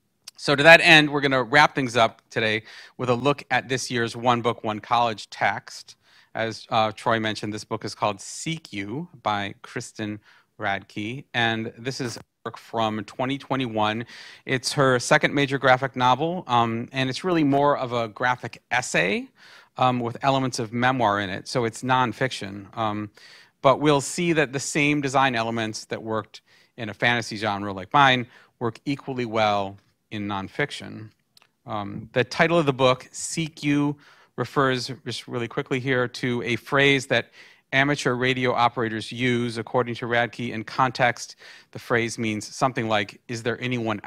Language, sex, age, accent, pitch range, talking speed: English, male, 40-59, American, 110-135 Hz, 165 wpm